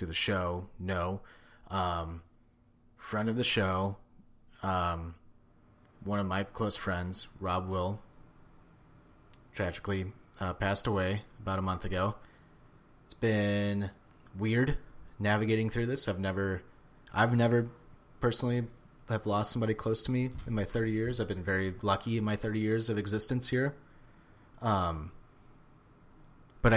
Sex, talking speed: male, 130 wpm